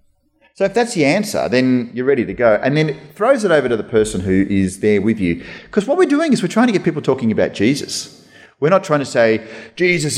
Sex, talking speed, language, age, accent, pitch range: male, 255 wpm, English, 40-59, Australian, 110-145 Hz